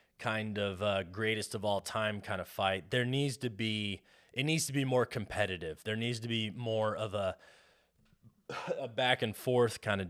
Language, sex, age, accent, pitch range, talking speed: English, male, 20-39, American, 100-120 Hz, 195 wpm